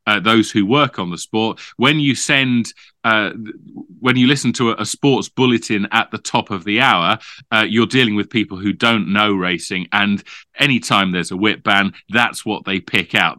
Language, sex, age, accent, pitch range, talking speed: English, male, 40-59, British, 100-120 Hz, 195 wpm